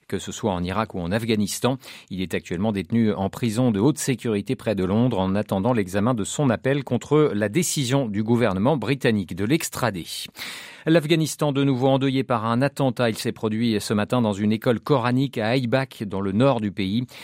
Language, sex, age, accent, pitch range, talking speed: French, male, 40-59, French, 110-140 Hz, 200 wpm